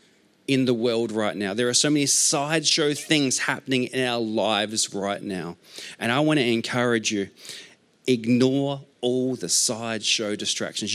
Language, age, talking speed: English, 40-59, 155 wpm